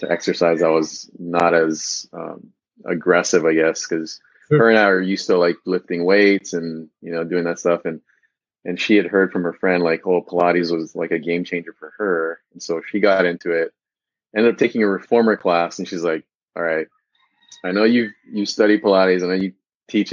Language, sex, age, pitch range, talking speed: English, male, 30-49, 85-100 Hz, 210 wpm